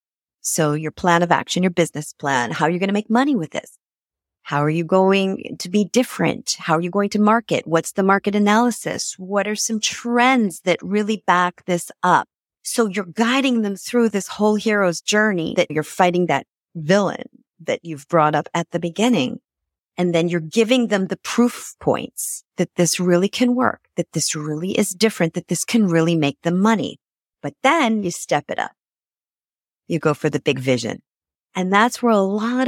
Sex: female